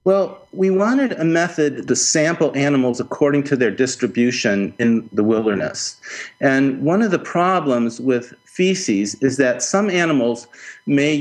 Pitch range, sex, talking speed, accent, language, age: 125-170 Hz, male, 145 wpm, American, English, 50-69